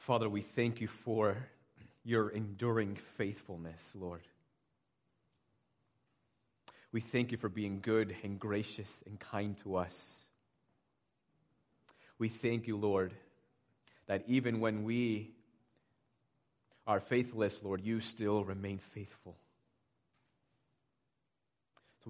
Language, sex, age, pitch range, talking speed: English, male, 30-49, 100-120 Hz, 100 wpm